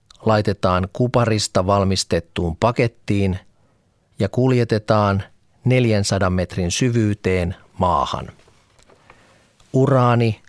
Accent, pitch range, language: native, 100-120 Hz, Finnish